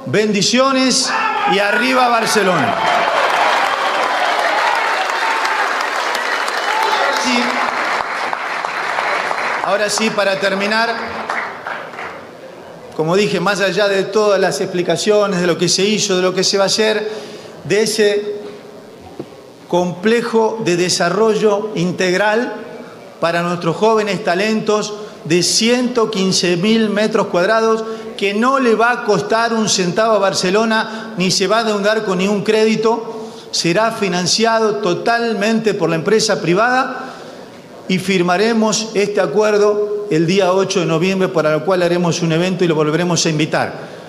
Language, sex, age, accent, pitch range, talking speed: Spanish, male, 40-59, Argentinian, 185-220 Hz, 120 wpm